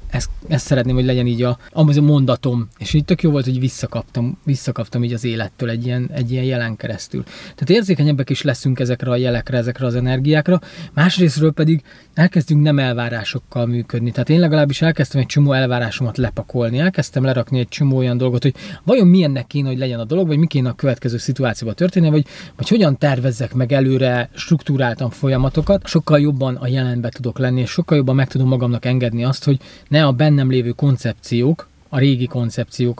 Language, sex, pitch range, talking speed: Hungarian, male, 125-155 Hz, 180 wpm